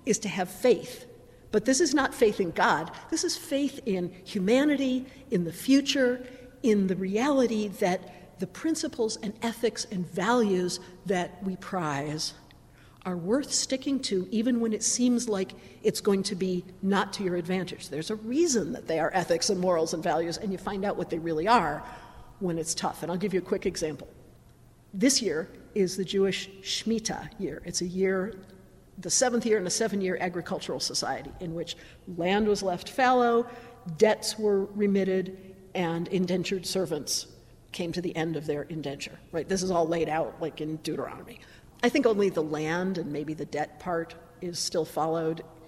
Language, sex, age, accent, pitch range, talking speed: English, female, 50-69, American, 165-220 Hz, 180 wpm